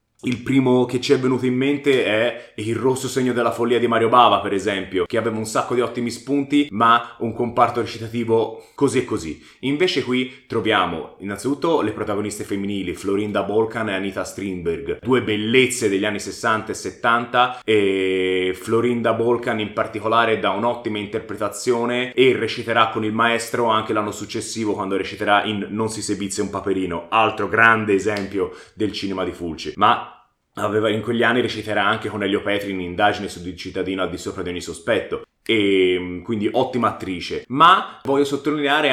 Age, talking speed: 20-39, 170 wpm